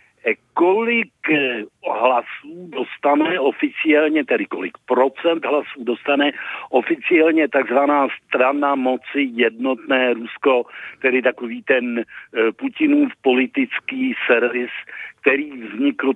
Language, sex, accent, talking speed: Czech, male, native, 85 wpm